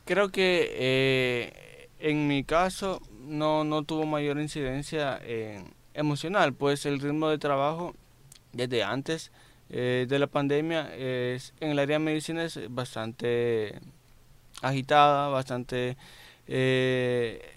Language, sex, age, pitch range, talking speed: Spanish, male, 20-39, 125-150 Hz, 120 wpm